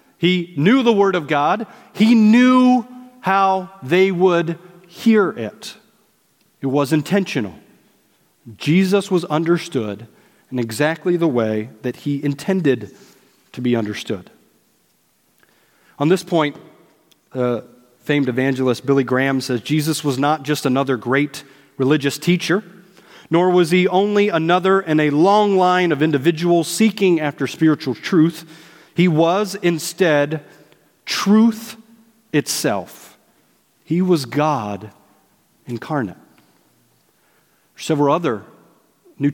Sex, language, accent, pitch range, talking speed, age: male, English, American, 135-180 Hz, 110 wpm, 40-59